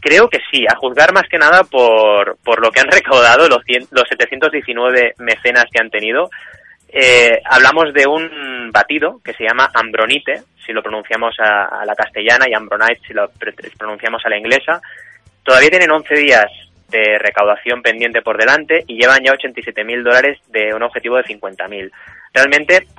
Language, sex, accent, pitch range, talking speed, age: Spanish, male, Spanish, 110-135 Hz, 175 wpm, 20-39